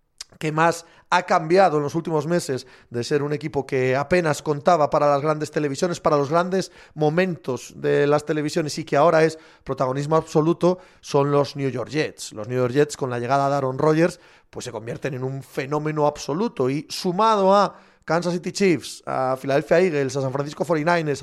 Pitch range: 140-175 Hz